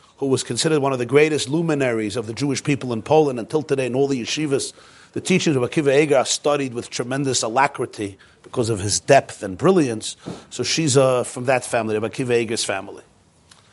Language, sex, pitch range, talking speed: English, male, 125-160 Hz, 200 wpm